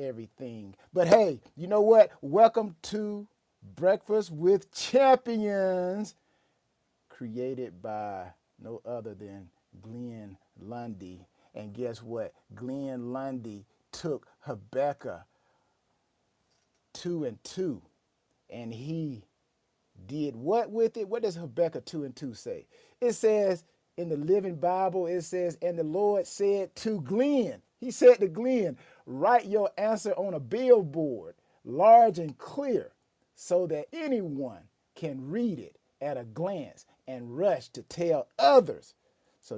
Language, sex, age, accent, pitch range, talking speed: English, male, 50-69, American, 130-210 Hz, 125 wpm